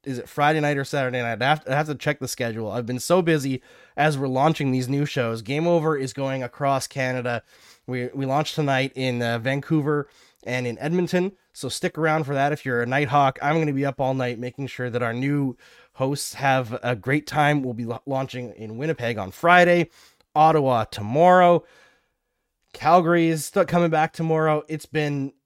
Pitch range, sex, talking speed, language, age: 120-150 Hz, male, 195 wpm, English, 20-39